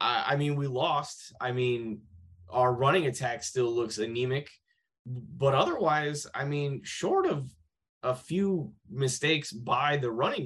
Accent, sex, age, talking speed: American, male, 20-39, 140 wpm